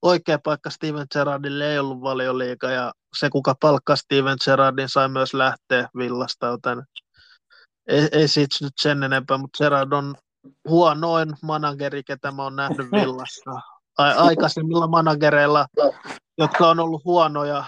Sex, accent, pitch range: male, native, 135-150 Hz